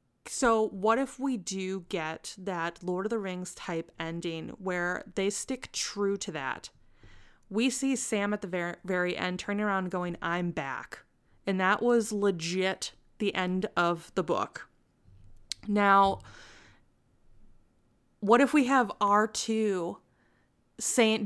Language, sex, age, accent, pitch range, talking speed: English, female, 20-39, American, 180-225 Hz, 135 wpm